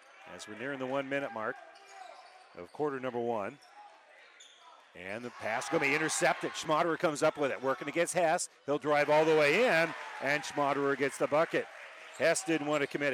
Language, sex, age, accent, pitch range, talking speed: English, male, 40-59, American, 135-170 Hz, 190 wpm